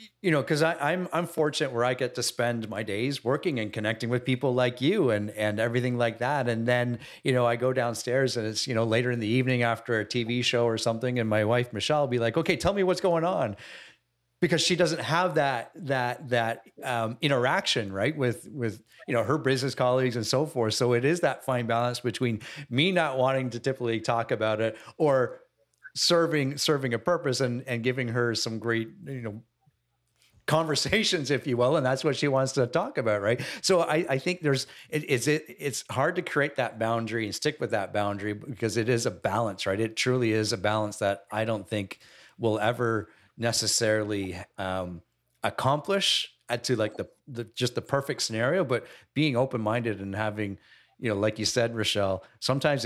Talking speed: 205 wpm